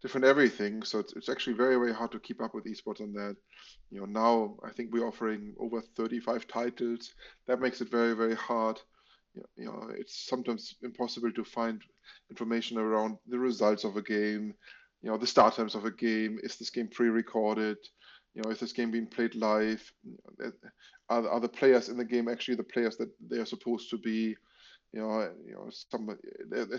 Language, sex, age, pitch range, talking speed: English, male, 20-39, 110-125 Hz, 195 wpm